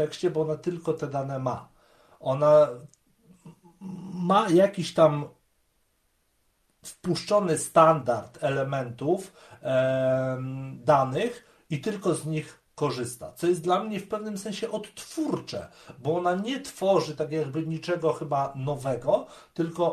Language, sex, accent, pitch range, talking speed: Polish, male, native, 130-175 Hz, 110 wpm